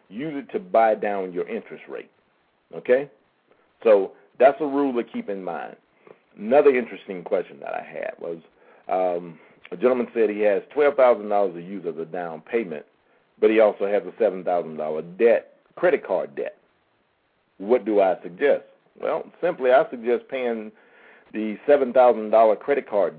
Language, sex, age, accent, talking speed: English, male, 50-69, American, 155 wpm